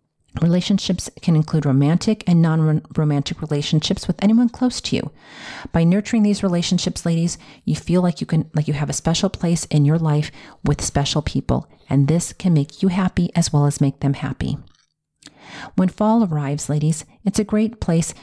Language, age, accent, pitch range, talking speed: English, 40-59, American, 150-175 Hz, 180 wpm